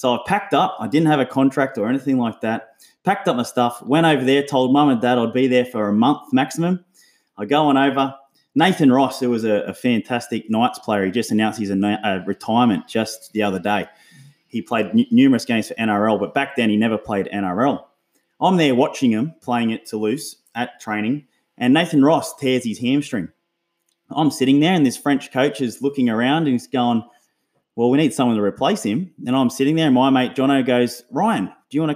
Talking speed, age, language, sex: 220 wpm, 20-39, English, male